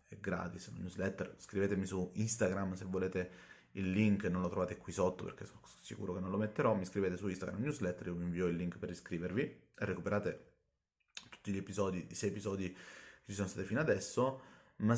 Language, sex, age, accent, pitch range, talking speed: Italian, male, 30-49, native, 90-105 Hz, 200 wpm